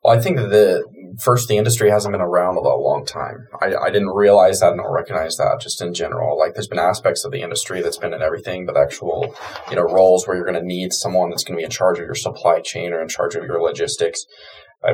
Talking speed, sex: 260 wpm, male